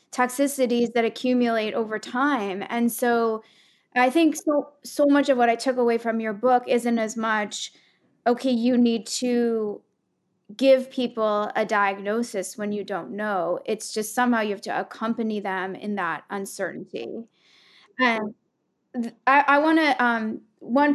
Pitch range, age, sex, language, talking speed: 215-245 Hz, 20-39, female, English, 150 wpm